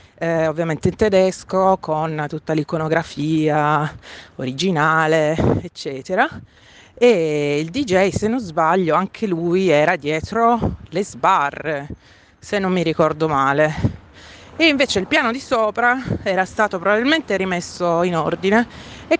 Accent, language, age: native, Italian, 30-49